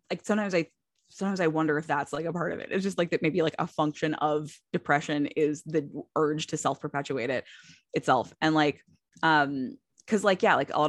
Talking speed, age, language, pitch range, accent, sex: 210 wpm, 20-39, English, 145-165 Hz, American, female